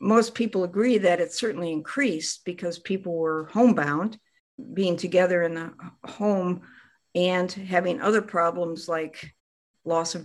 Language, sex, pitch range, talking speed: English, female, 165-200 Hz, 135 wpm